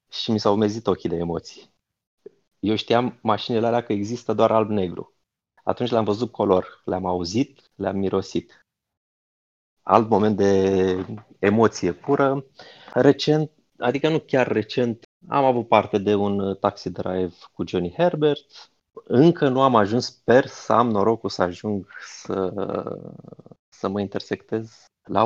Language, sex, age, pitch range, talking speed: Romanian, male, 30-49, 95-115 Hz, 140 wpm